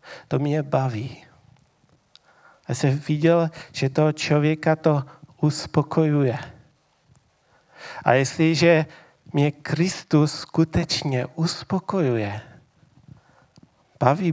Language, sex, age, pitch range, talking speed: Czech, male, 40-59, 135-155 Hz, 75 wpm